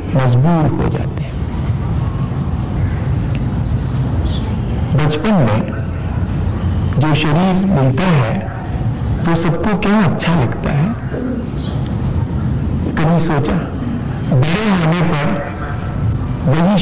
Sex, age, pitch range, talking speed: male, 60-79, 125-170 Hz, 80 wpm